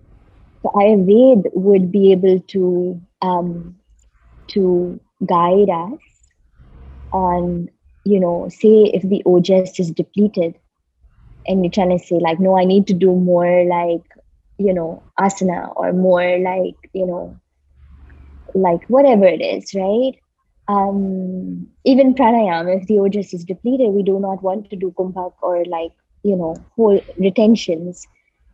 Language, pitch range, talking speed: English, 175-205 Hz, 135 wpm